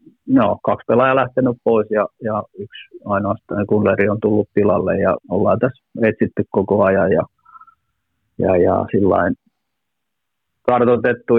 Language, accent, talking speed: Finnish, native, 120 wpm